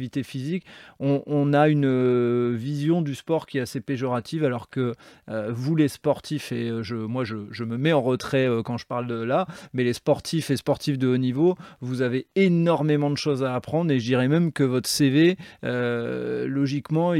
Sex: male